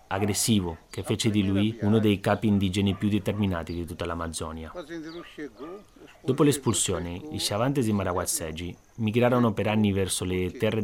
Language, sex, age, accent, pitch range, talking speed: Italian, male, 30-49, native, 95-110 Hz, 145 wpm